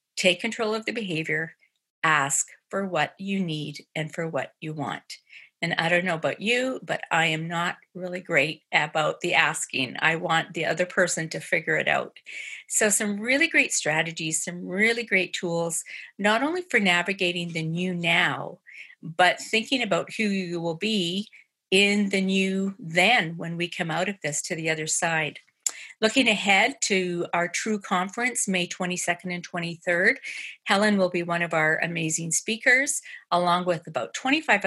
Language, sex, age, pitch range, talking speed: English, female, 50-69, 170-205 Hz, 170 wpm